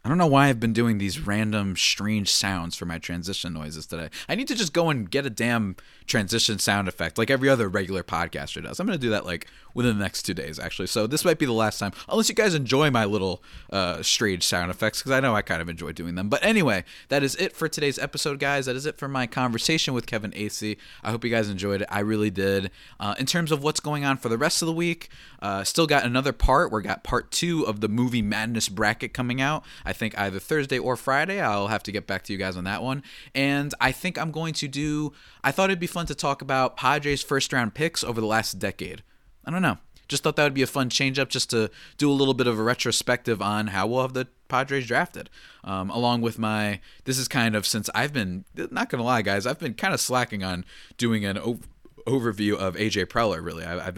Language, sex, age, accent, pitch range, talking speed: English, male, 20-39, American, 100-135 Hz, 250 wpm